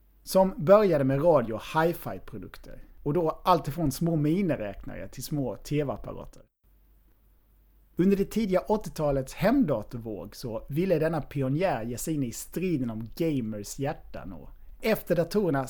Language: Swedish